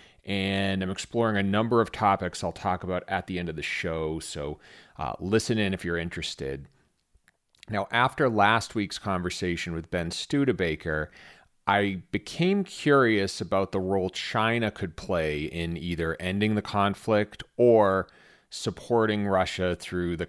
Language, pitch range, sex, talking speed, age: English, 85-110 Hz, male, 150 wpm, 40-59